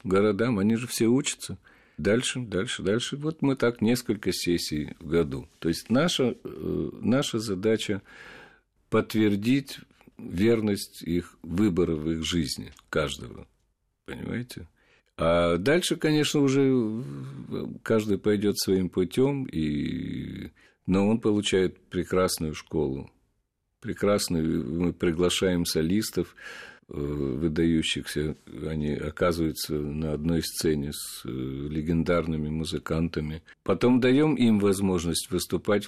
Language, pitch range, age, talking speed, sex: Russian, 80-105 Hz, 50-69, 100 wpm, male